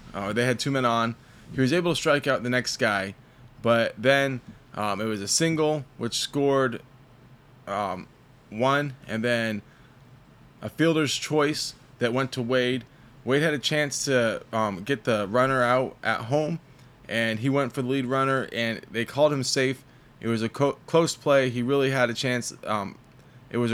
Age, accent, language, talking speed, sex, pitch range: 20-39, American, English, 185 wpm, male, 115-135 Hz